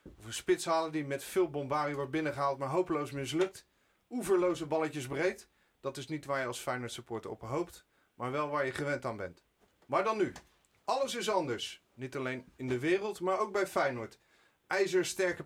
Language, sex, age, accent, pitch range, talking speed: Dutch, male, 40-59, Dutch, 135-185 Hz, 185 wpm